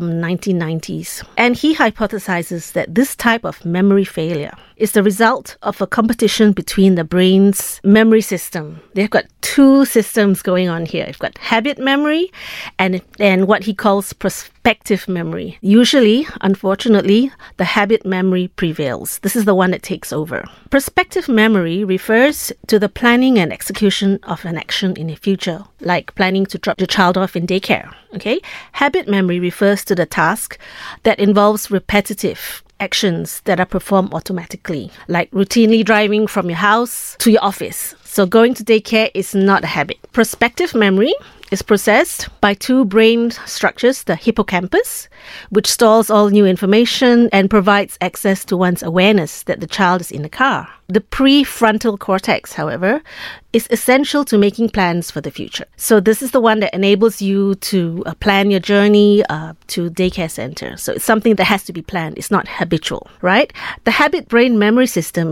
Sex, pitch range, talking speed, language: female, 185-225 Hz, 165 wpm, English